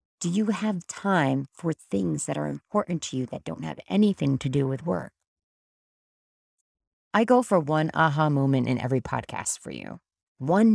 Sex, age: female, 30-49